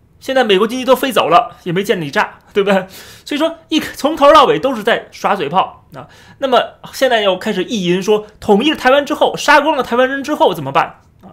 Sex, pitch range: male, 170-265 Hz